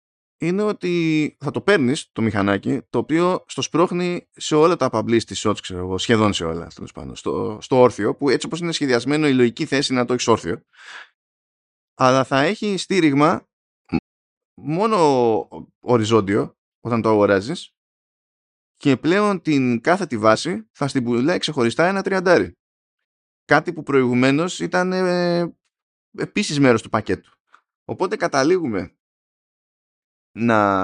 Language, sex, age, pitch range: Greek, male, 20-39, 110-150 Hz